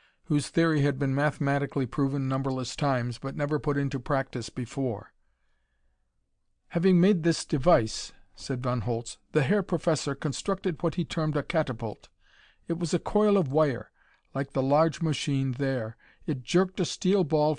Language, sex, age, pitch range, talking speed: English, male, 50-69, 135-160 Hz, 155 wpm